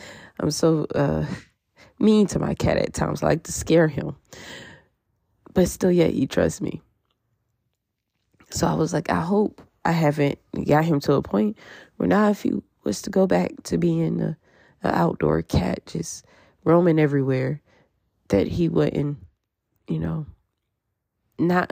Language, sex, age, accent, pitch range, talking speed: English, female, 20-39, American, 130-180 Hz, 150 wpm